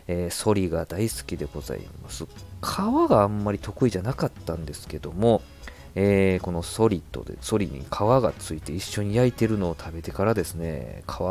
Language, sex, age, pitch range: Japanese, male, 40-59, 80-110 Hz